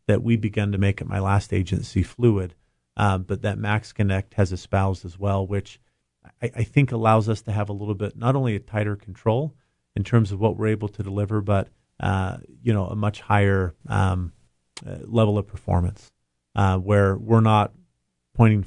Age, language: 40-59, English